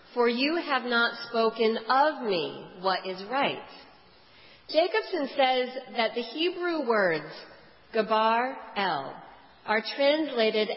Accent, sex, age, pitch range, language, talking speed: American, female, 40-59, 210-275 Hz, English, 110 wpm